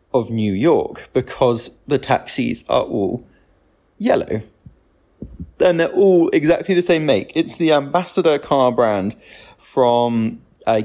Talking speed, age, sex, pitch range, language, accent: 125 wpm, 20-39, male, 120-160 Hz, English, British